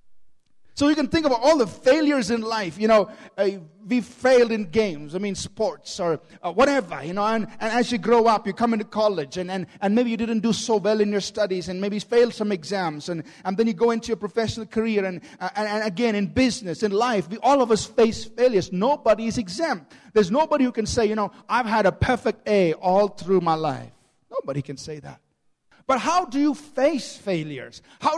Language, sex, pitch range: English, male, 185-240 Hz